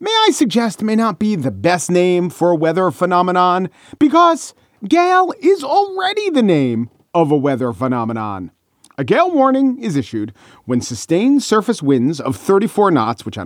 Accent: American